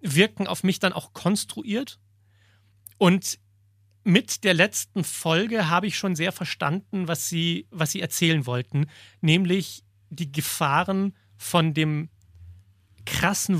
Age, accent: 40-59, German